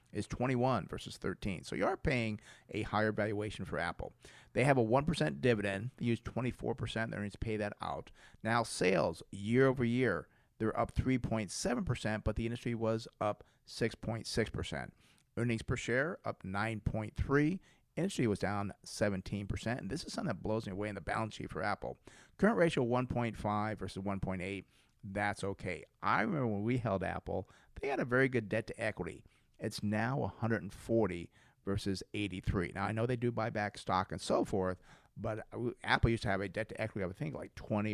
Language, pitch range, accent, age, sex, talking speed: English, 100-125 Hz, American, 40-59, male, 175 wpm